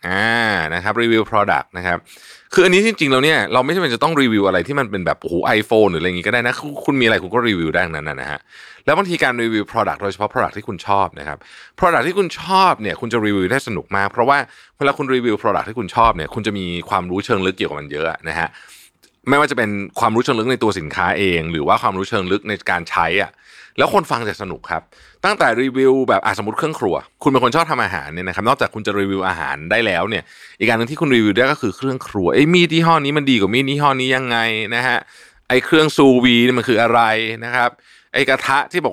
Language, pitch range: Thai, 105-140 Hz